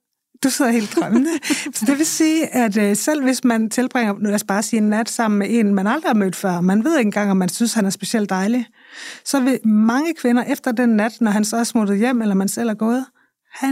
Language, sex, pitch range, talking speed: Danish, female, 215-270 Hz, 255 wpm